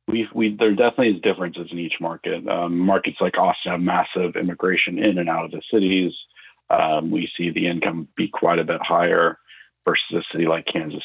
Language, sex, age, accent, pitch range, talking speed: English, male, 40-59, American, 85-100 Hz, 200 wpm